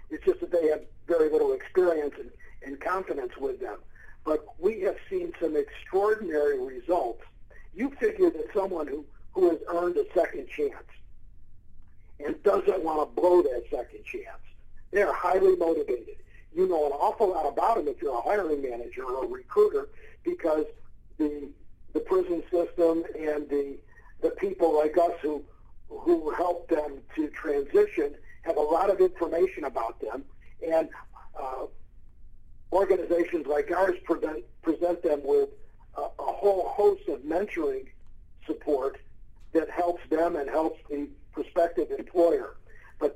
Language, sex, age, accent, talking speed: English, male, 50-69, American, 145 wpm